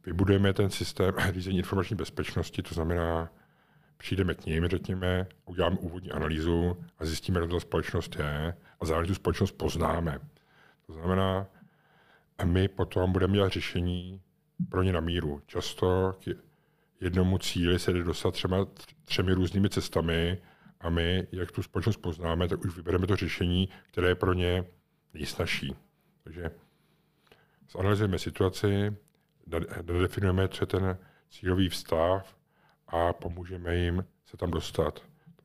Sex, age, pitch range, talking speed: male, 50-69, 85-95 Hz, 135 wpm